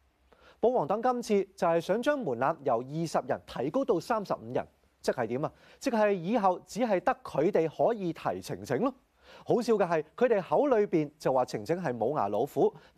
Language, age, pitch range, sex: Chinese, 30-49, 150-230 Hz, male